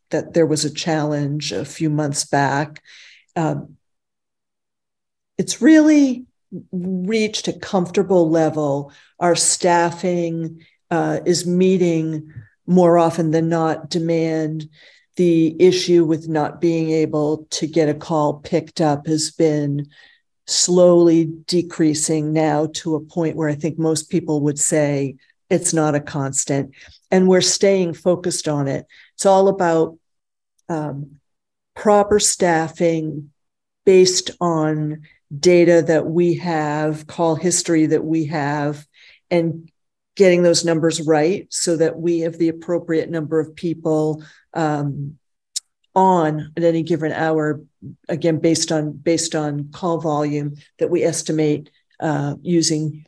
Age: 50-69